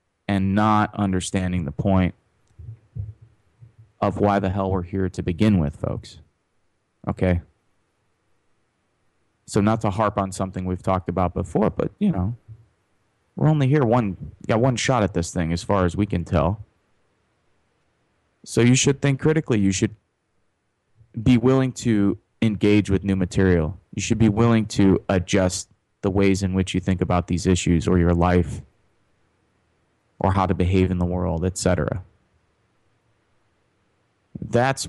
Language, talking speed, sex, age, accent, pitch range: English, 150 wpm, male, 30-49, American, 90-110 Hz